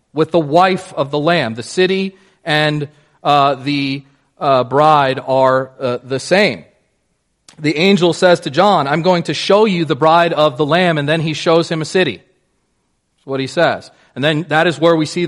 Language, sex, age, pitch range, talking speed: English, male, 40-59, 140-170 Hz, 195 wpm